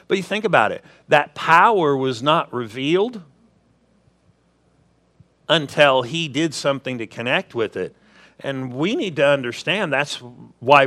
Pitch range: 115-155 Hz